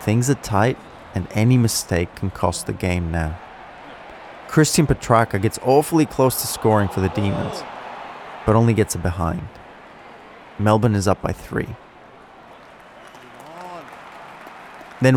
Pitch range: 95-125 Hz